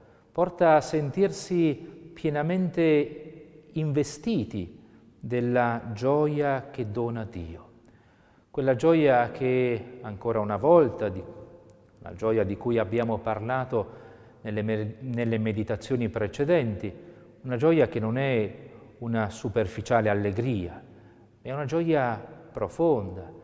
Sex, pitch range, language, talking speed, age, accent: male, 105-145 Hz, Italian, 95 wpm, 40-59, native